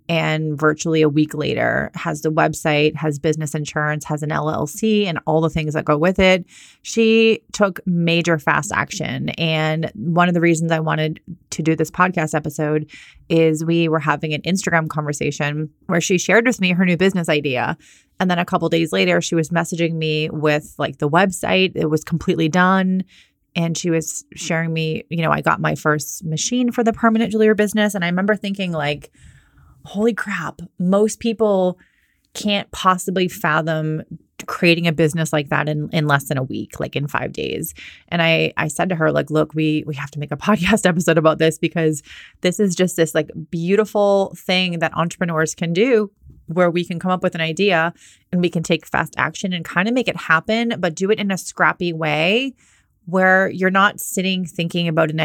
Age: 30-49